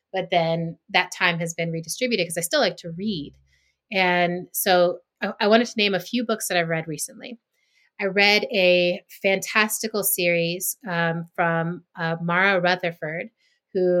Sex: female